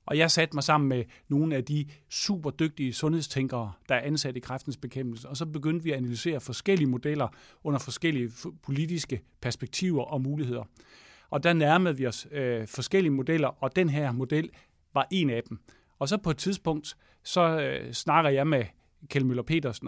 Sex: male